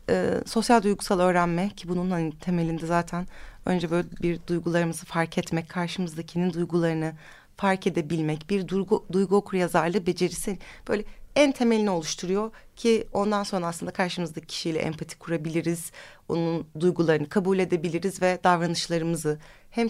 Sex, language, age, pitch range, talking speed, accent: female, Turkish, 30-49, 170-220 Hz, 130 wpm, native